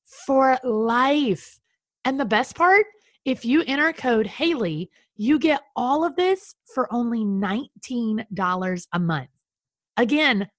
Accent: American